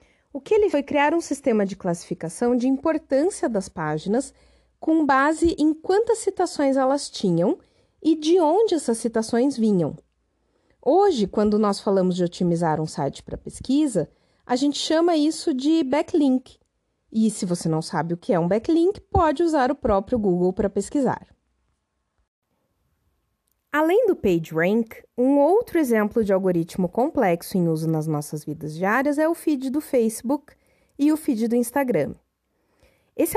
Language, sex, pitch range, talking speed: Portuguese, female, 195-310 Hz, 155 wpm